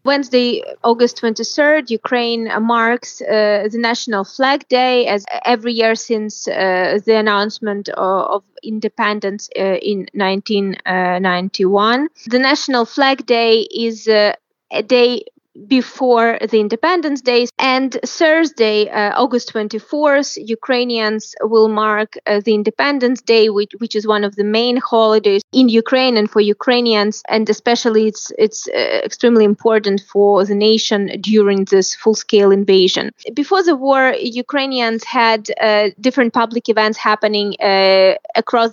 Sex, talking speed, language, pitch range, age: female, 130 wpm, English, 210-245 Hz, 20-39